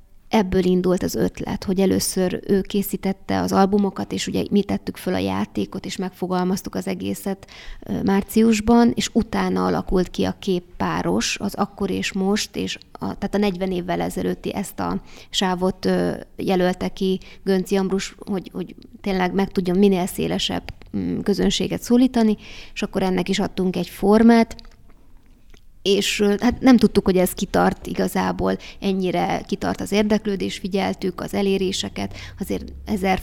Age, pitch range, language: 20-39, 180-200 Hz, Hungarian